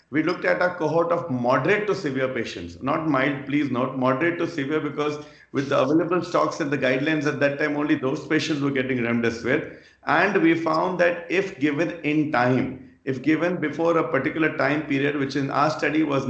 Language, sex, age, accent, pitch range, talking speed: English, male, 40-59, Indian, 130-160 Hz, 200 wpm